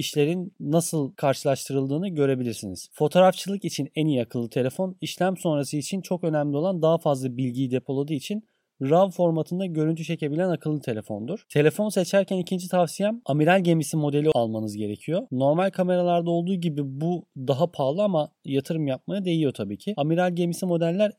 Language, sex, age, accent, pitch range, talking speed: Turkish, male, 30-49, native, 140-180 Hz, 145 wpm